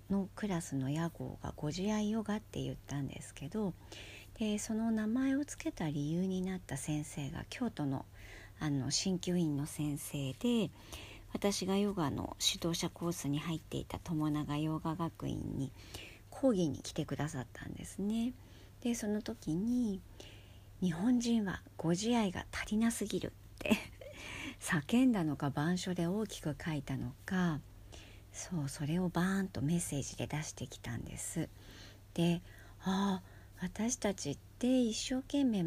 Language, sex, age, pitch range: Japanese, male, 50-69, 130-200 Hz